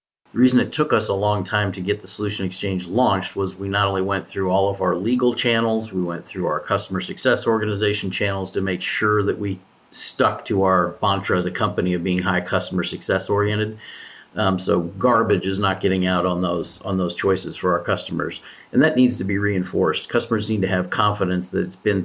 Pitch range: 95-120 Hz